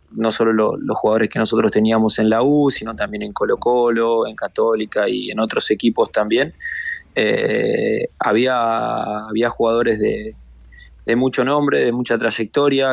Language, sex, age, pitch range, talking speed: Spanish, male, 20-39, 110-125 Hz, 155 wpm